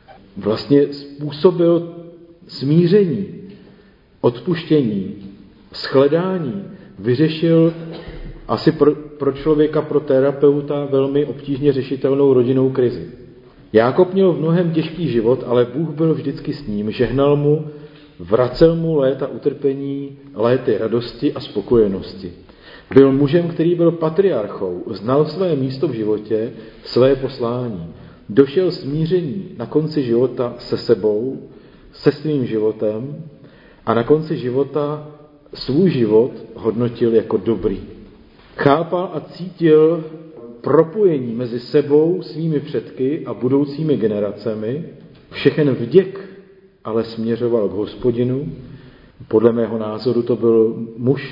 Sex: male